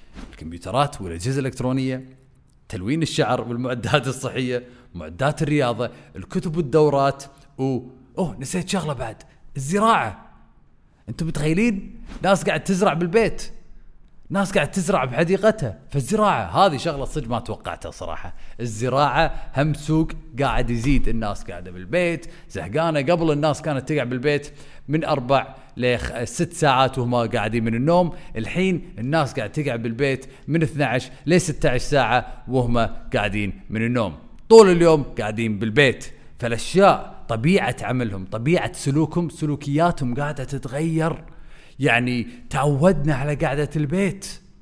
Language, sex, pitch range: Arabic, male, 125-175 Hz